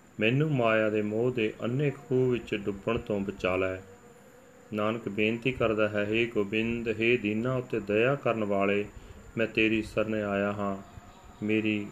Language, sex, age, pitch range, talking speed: Punjabi, male, 30-49, 105-120 Hz, 145 wpm